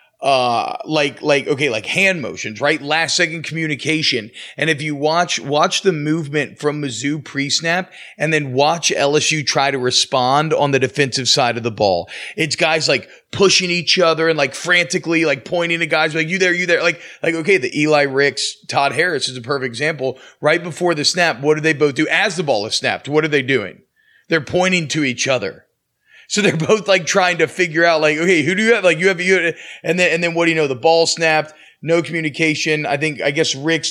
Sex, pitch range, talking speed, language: male, 140-170 Hz, 220 wpm, English